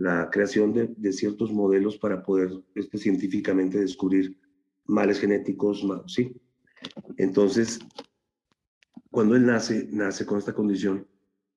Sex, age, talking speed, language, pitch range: male, 40-59, 120 wpm, Spanish, 95-115 Hz